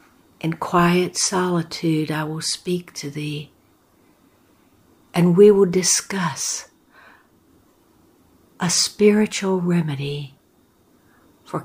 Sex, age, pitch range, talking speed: female, 60-79, 145-175 Hz, 80 wpm